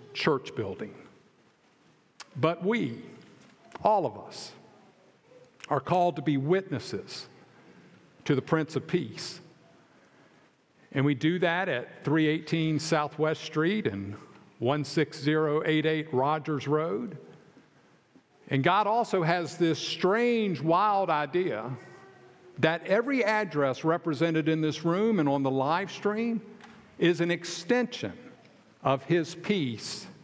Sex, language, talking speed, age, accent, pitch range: male, English, 110 wpm, 50-69, American, 150-200 Hz